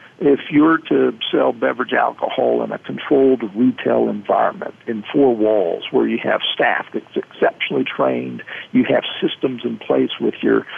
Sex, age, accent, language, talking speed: male, 50-69, American, English, 155 wpm